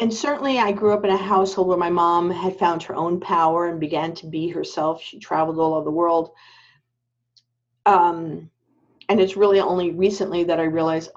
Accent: American